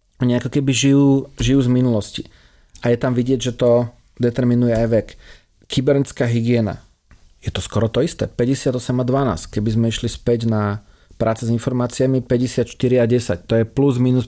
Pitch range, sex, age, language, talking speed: 115-135 Hz, male, 40-59, Slovak, 170 wpm